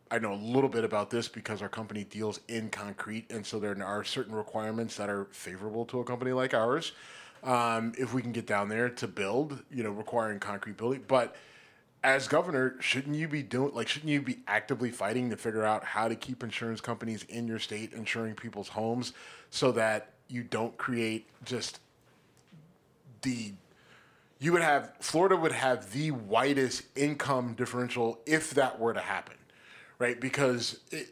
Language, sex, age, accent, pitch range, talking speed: English, male, 30-49, American, 110-135 Hz, 180 wpm